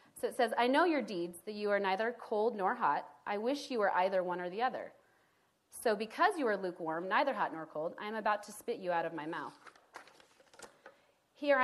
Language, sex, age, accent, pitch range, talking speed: English, female, 30-49, American, 190-250 Hz, 220 wpm